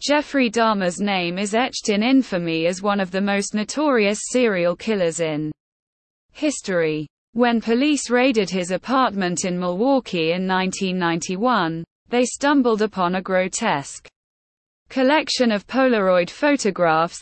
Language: English